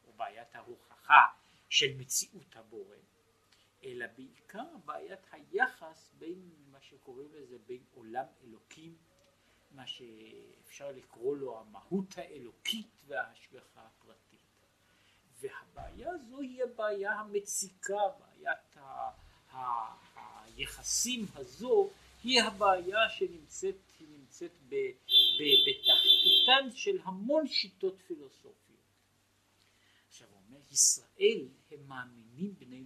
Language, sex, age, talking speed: Hebrew, male, 50-69, 90 wpm